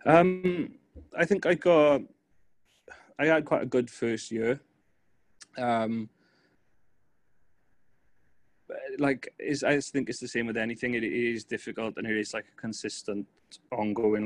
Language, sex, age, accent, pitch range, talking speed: English, male, 30-49, British, 110-125 Hz, 135 wpm